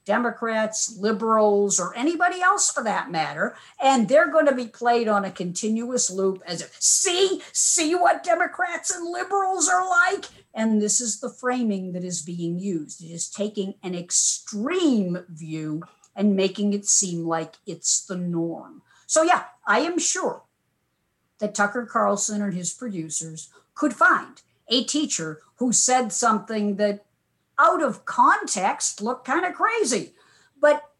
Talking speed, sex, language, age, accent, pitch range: 150 wpm, female, English, 50-69, American, 195-320 Hz